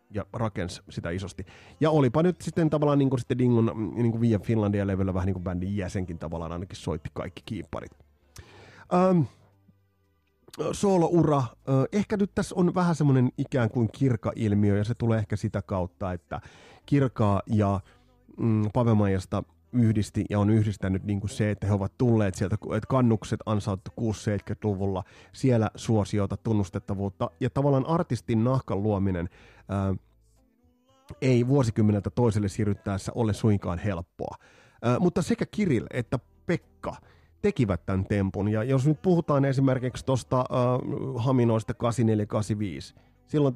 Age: 30-49